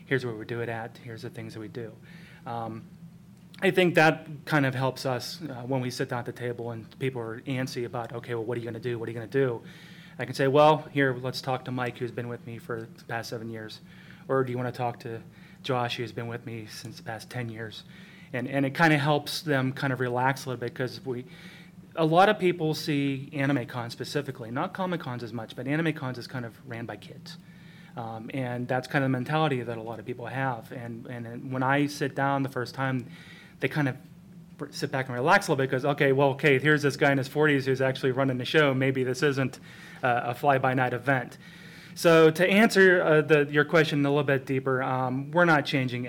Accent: American